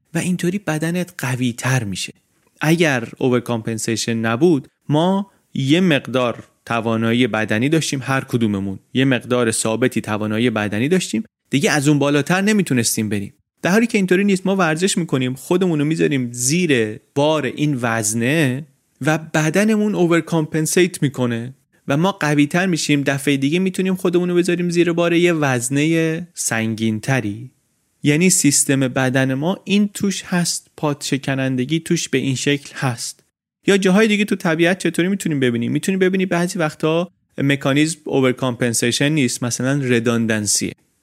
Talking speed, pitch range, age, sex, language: 135 wpm, 120-170 Hz, 30-49, male, Persian